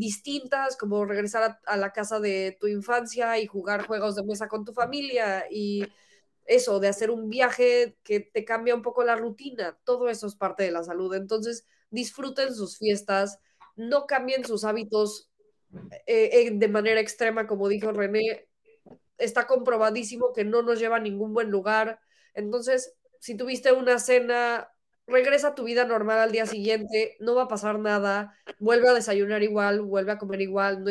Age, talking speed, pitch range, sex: 20-39, 175 wpm, 205-240 Hz, female